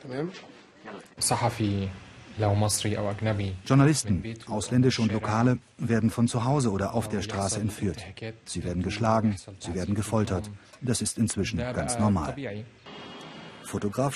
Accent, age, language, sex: German, 40-59, German, male